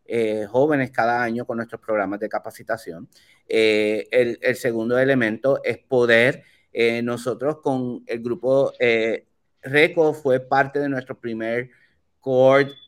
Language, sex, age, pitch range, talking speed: Spanish, male, 30-49, 115-140 Hz, 135 wpm